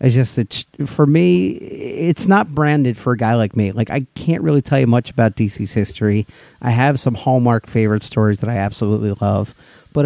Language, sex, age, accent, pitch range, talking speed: English, male, 40-59, American, 110-135 Hz, 205 wpm